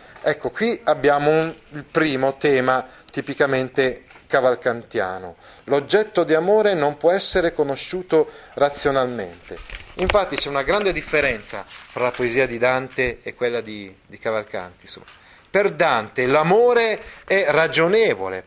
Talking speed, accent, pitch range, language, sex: 115 wpm, native, 115-145 Hz, Italian, male